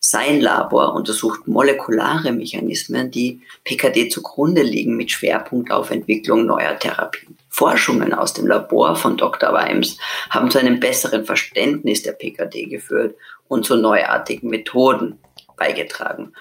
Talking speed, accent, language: 130 wpm, German, German